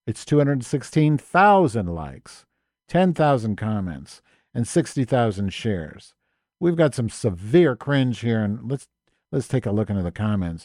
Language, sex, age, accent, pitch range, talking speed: English, male, 50-69, American, 95-130 Hz, 130 wpm